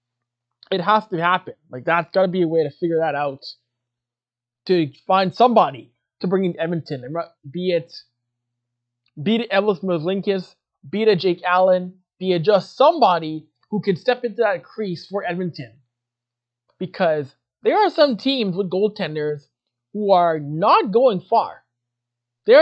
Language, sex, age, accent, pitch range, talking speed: English, male, 20-39, American, 140-225 Hz, 150 wpm